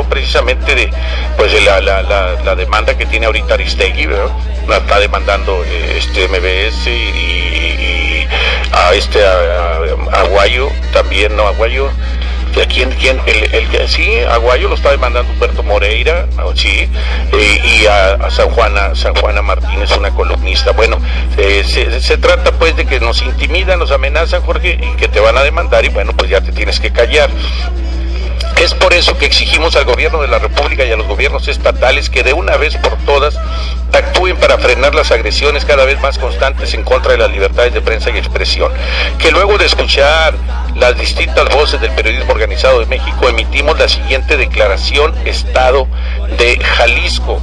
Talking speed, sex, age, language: 175 wpm, male, 50-69, English